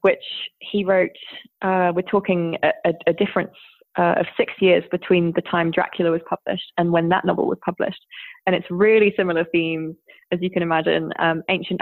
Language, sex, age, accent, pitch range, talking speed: English, female, 20-39, British, 170-210 Hz, 190 wpm